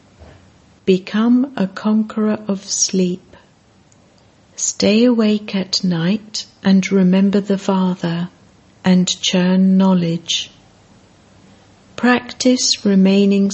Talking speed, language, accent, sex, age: 80 wpm, English, British, female, 60-79